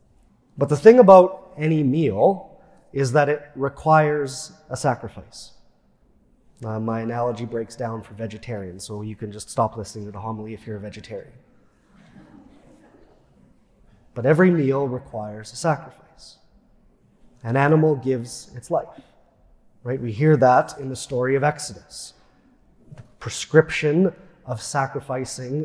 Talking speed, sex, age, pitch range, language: 130 wpm, male, 30-49, 115-150 Hz, English